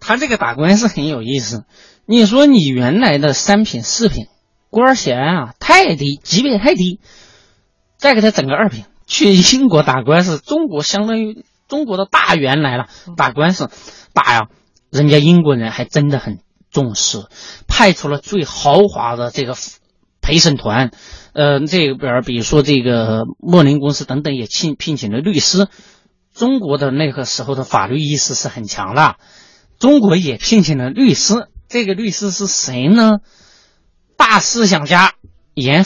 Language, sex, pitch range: Chinese, male, 130-200 Hz